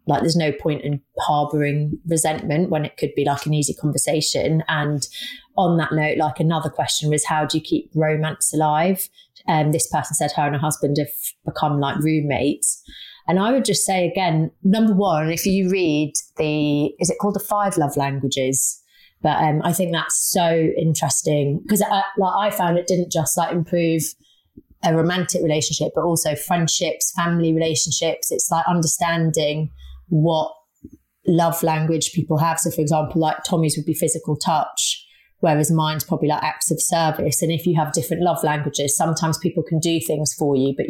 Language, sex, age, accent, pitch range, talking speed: English, female, 30-49, British, 150-175 Hz, 180 wpm